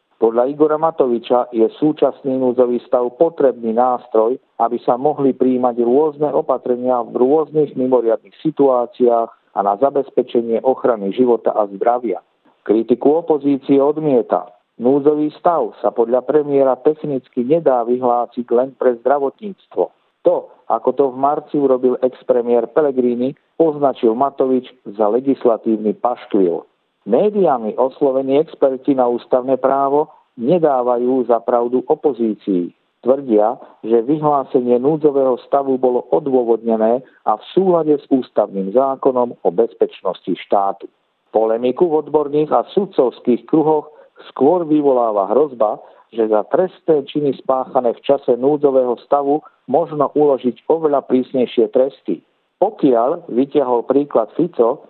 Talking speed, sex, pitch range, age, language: 115 wpm, male, 120-150 Hz, 50-69, Slovak